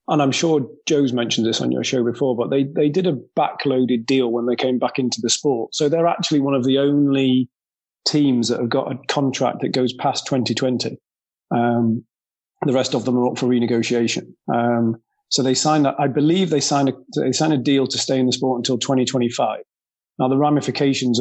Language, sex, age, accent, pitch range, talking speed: English, male, 40-59, British, 120-135 Hz, 210 wpm